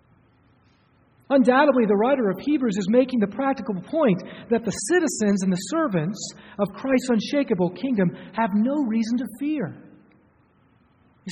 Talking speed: 140 wpm